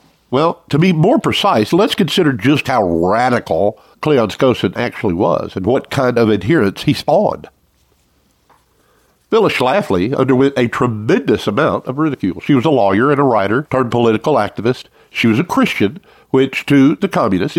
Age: 60-79